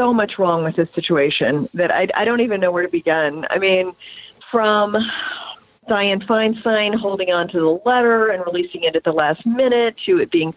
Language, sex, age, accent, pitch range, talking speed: English, female, 40-59, American, 180-225 Hz, 195 wpm